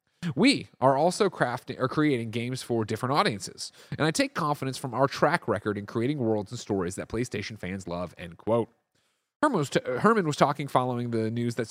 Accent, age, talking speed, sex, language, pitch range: American, 30-49, 190 wpm, male, English, 110-150 Hz